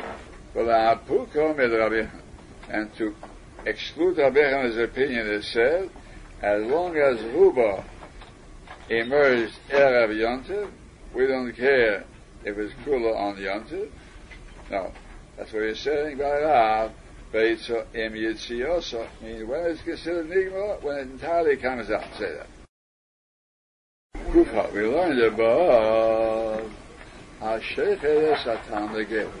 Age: 60-79